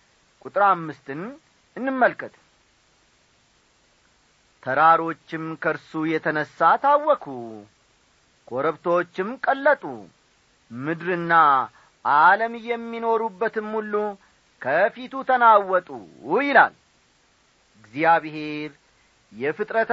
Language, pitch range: Amharic, 155-235 Hz